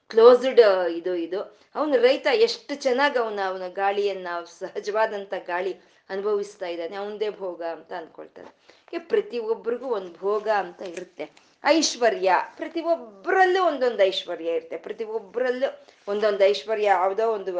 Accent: native